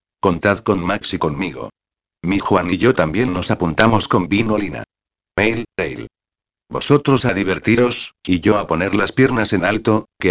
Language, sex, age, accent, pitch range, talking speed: Spanish, male, 60-79, Spanish, 95-115 Hz, 165 wpm